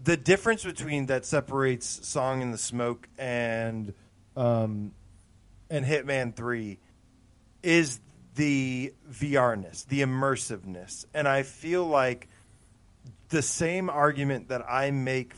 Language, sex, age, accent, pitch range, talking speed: English, male, 40-59, American, 115-145 Hz, 115 wpm